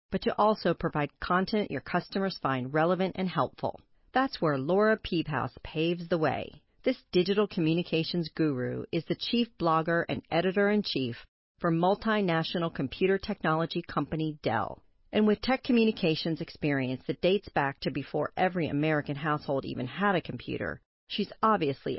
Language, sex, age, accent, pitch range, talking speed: English, female, 40-59, American, 150-205 Hz, 145 wpm